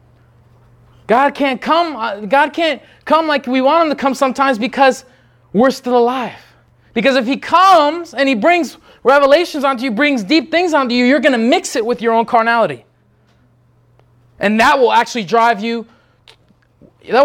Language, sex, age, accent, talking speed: English, male, 20-39, American, 160 wpm